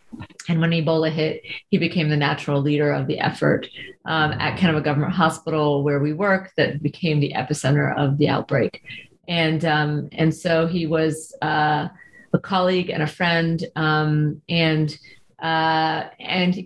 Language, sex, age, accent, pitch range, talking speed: English, female, 40-59, American, 150-170 Hz, 160 wpm